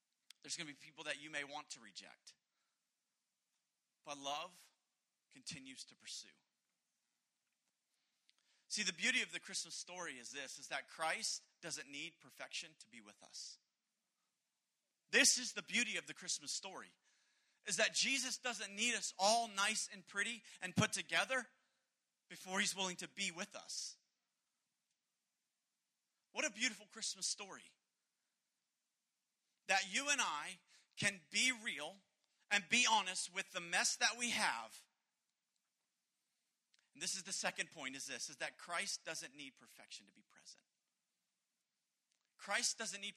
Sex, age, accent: male, 40-59, American